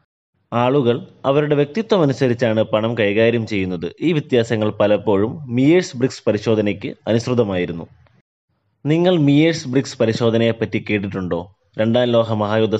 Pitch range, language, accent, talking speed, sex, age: 105-135 Hz, Malayalam, native, 100 wpm, male, 20-39